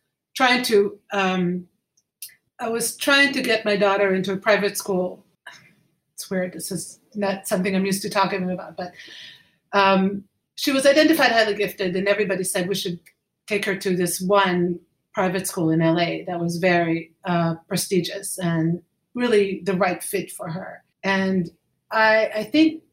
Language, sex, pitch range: English, female, 185-210 Hz